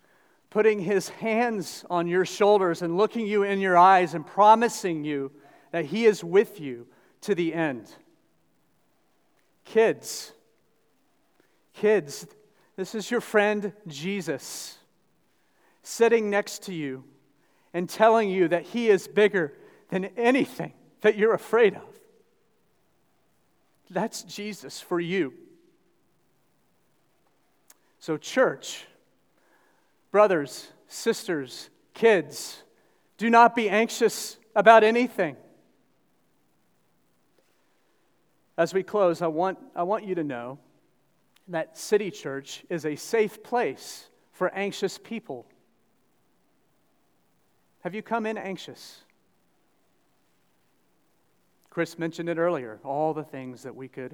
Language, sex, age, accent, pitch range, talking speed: English, male, 40-59, American, 160-215 Hz, 105 wpm